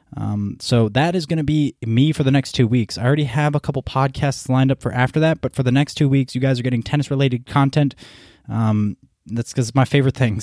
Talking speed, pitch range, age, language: 255 wpm, 105-130 Hz, 20-39, English